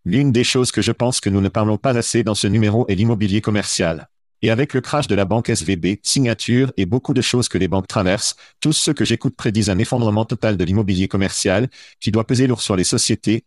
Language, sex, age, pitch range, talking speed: French, male, 50-69, 100-125 Hz, 235 wpm